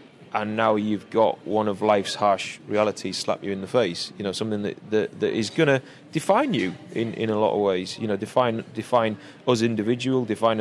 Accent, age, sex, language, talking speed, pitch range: British, 20-39, male, English, 215 wpm, 100-120 Hz